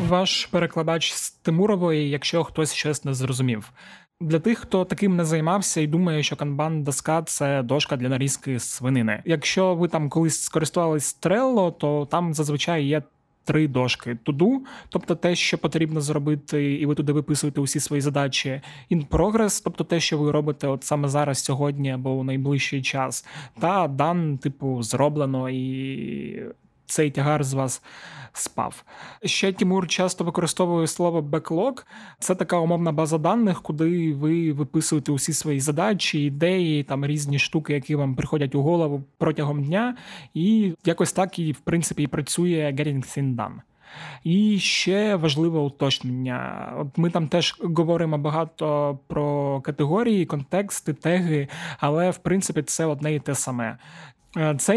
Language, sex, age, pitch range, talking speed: Ukrainian, male, 20-39, 145-170 Hz, 150 wpm